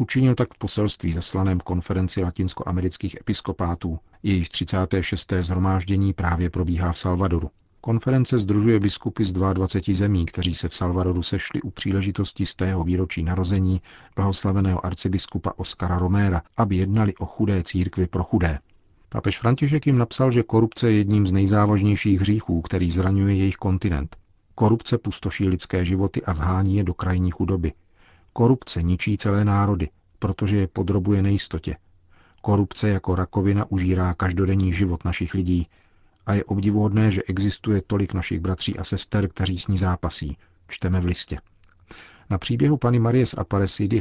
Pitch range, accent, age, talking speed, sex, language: 90-100 Hz, native, 40-59, 145 wpm, male, Czech